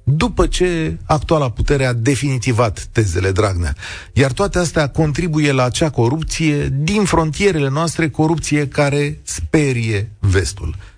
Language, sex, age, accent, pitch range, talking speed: Romanian, male, 40-59, native, 100-150 Hz, 120 wpm